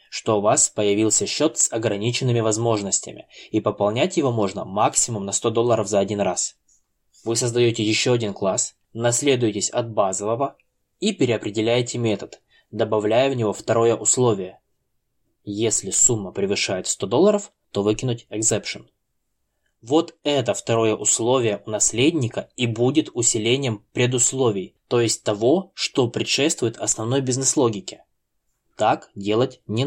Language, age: Russian, 20-39